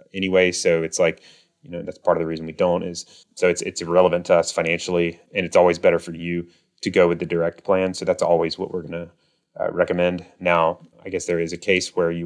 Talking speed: 250 wpm